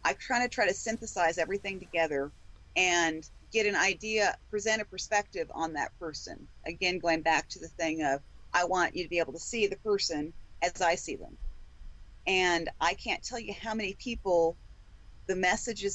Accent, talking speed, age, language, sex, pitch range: American, 185 wpm, 40-59, English, female, 155-205 Hz